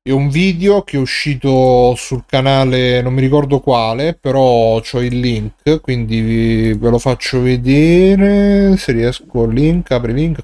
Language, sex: Italian, male